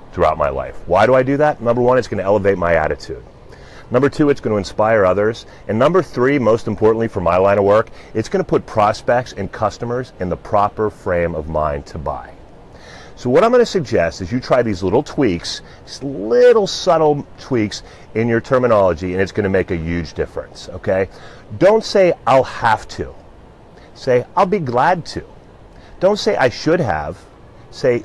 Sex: male